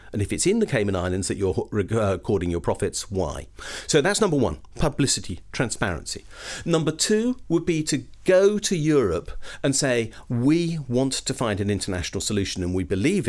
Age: 50-69